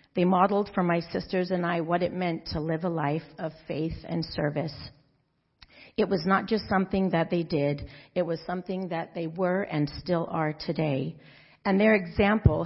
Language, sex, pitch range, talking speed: English, female, 155-190 Hz, 185 wpm